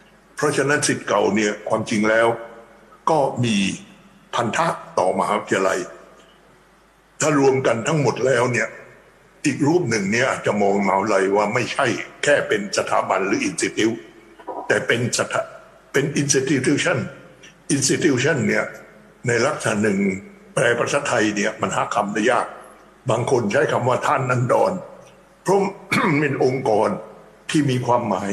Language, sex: English, male